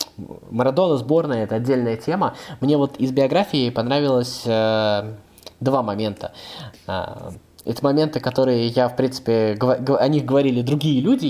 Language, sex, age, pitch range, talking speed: Russian, male, 20-39, 115-135 Hz, 145 wpm